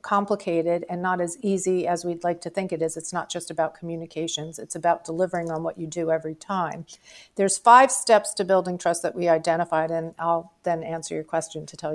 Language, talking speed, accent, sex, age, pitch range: English, 215 wpm, American, female, 40-59, 170-205 Hz